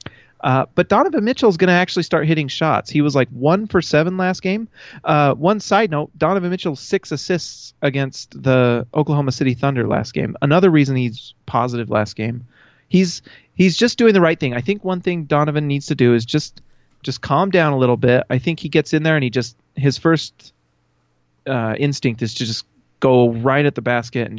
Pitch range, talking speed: 125-165 Hz, 210 wpm